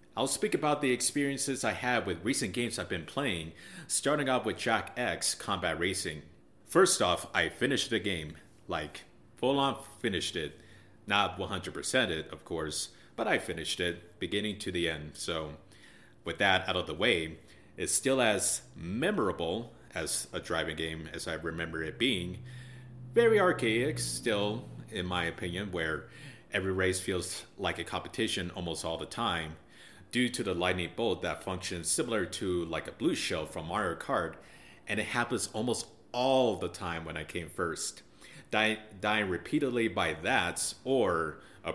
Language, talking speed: English, 165 wpm